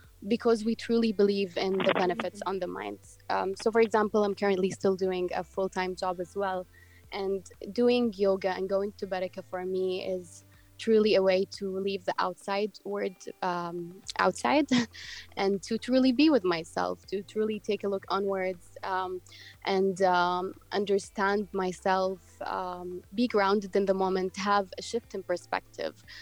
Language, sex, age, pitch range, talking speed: English, female, 20-39, 185-210 Hz, 160 wpm